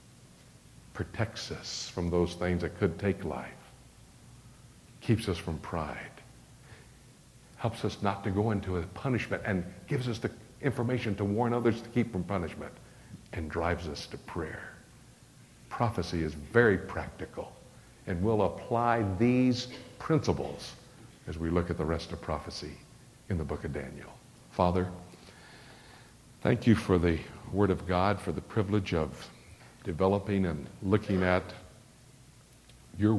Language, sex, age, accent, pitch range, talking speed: English, male, 60-79, American, 85-115 Hz, 140 wpm